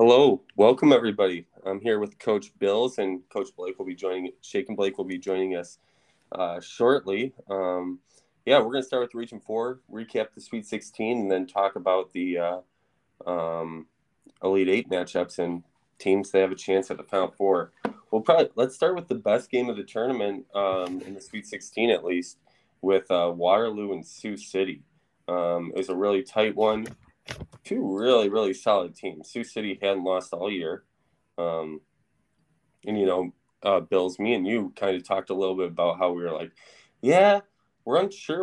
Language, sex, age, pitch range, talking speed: English, male, 20-39, 90-110 Hz, 185 wpm